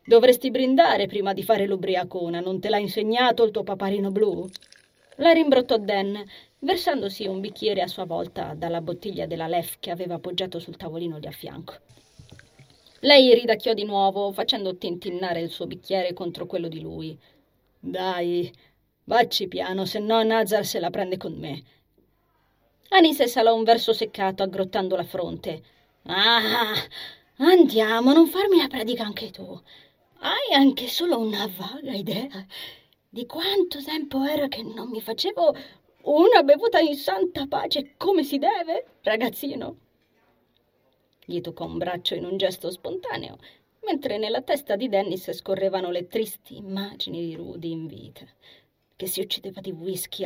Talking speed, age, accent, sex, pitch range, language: 145 wpm, 20-39, native, female, 175-240 Hz, Italian